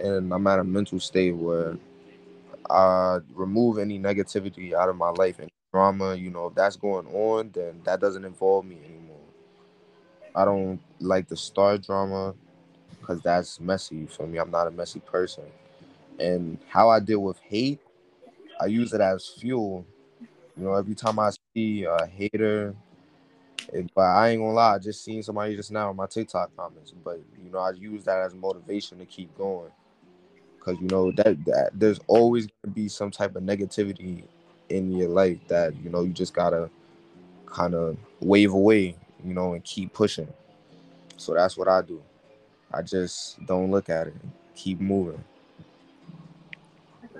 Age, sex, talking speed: 20-39, male, 175 wpm